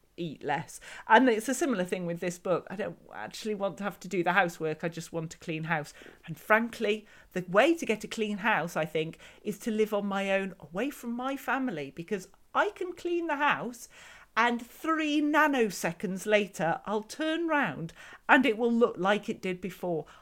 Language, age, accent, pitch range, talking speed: English, 40-59, British, 185-265 Hz, 200 wpm